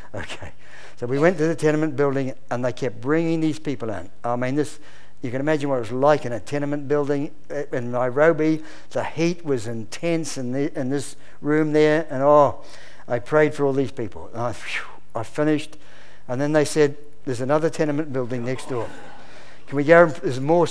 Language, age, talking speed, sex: English, 60-79, 205 wpm, male